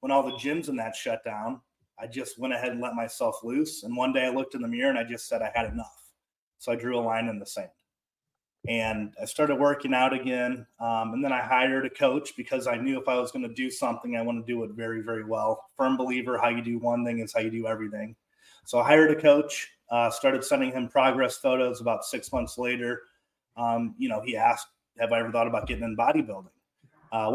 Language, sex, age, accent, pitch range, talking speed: English, male, 30-49, American, 115-135 Hz, 245 wpm